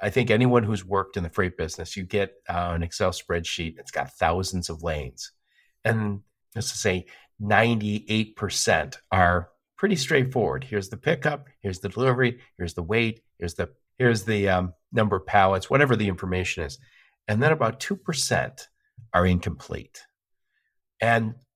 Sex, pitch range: male, 95-120 Hz